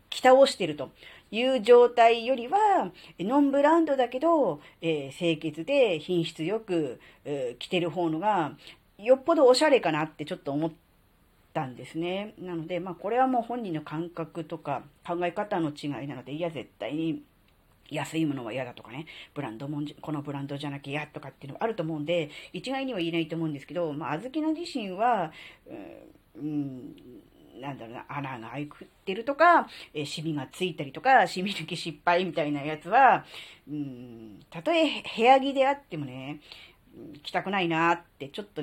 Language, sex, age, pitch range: Japanese, female, 40-59, 145-210 Hz